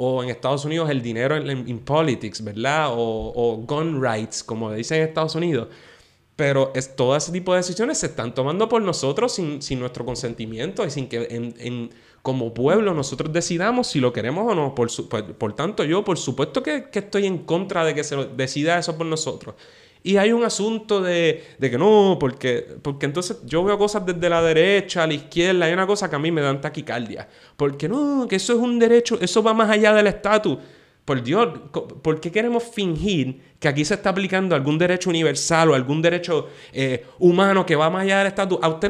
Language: Spanish